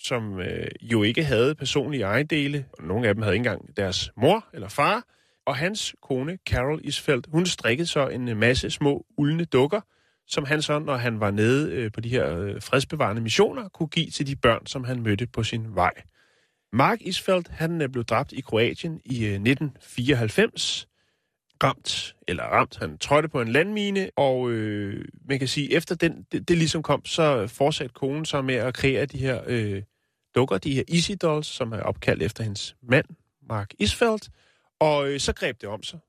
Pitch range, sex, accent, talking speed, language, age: 115-155 Hz, male, native, 190 wpm, Danish, 30-49